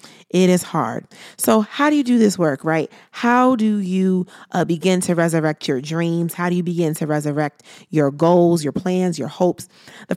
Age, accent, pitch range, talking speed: 30-49, American, 165-200 Hz, 195 wpm